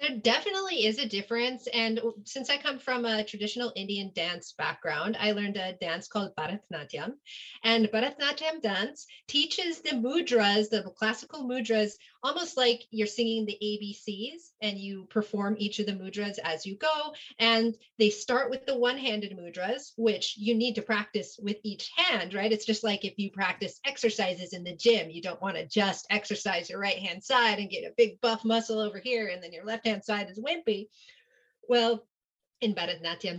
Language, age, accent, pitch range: English, 30-49, American, 200-245 Hz